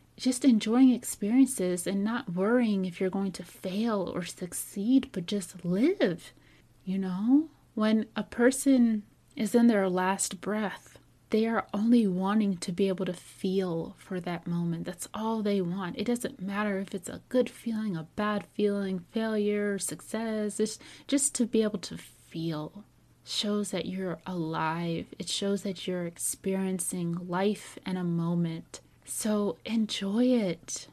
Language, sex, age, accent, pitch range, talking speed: English, female, 30-49, American, 185-225 Hz, 150 wpm